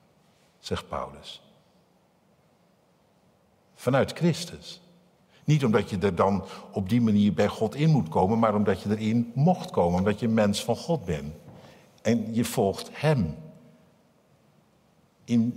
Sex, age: male, 60-79